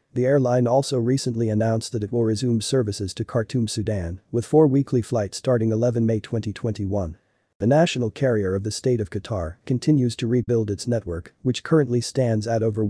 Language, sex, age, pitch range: English, male, 40-59, 105-125 Hz